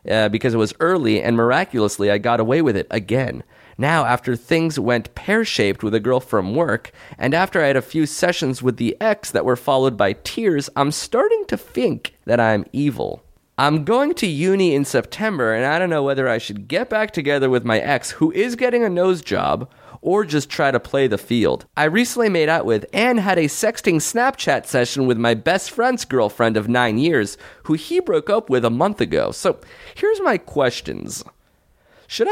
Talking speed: 200 wpm